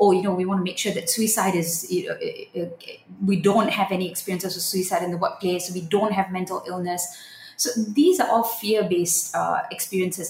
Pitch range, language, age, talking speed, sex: 180-235 Hz, English, 30-49, 205 wpm, female